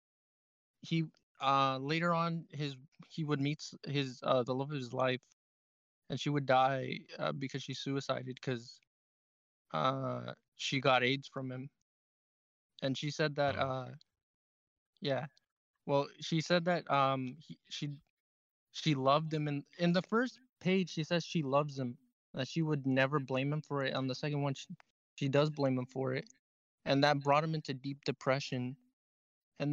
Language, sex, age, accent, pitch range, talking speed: English, male, 20-39, American, 130-155 Hz, 165 wpm